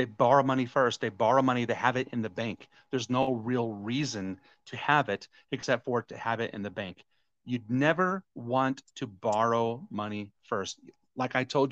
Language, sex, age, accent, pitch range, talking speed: English, male, 40-59, American, 110-135 Hz, 195 wpm